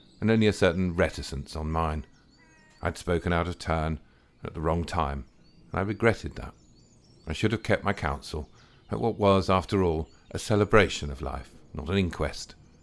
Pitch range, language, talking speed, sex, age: 80-115 Hz, English, 180 wpm, male, 50-69